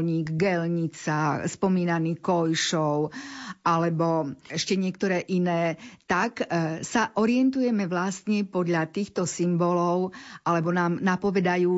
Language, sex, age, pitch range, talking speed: Slovak, female, 50-69, 170-195 Hz, 90 wpm